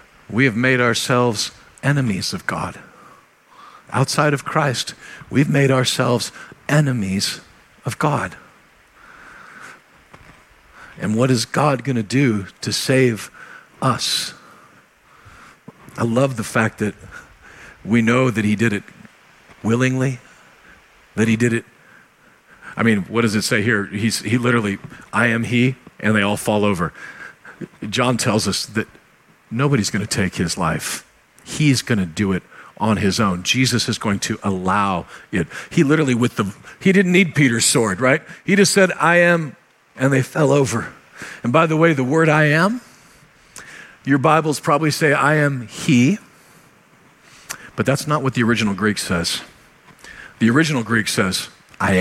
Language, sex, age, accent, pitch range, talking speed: English, male, 50-69, American, 110-140 Hz, 150 wpm